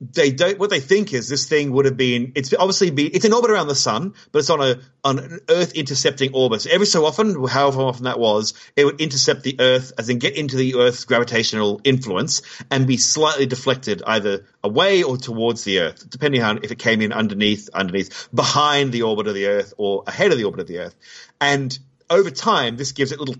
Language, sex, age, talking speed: English, male, 40-59, 230 wpm